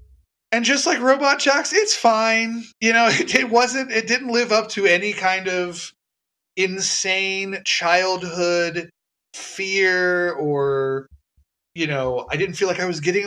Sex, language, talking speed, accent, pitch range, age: male, English, 145 wpm, American, 135-190 Hz, 30-49